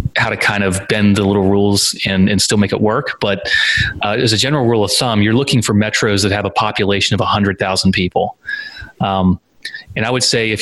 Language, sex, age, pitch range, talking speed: English, male, 30-49, 95-110 Hz, 225 wpm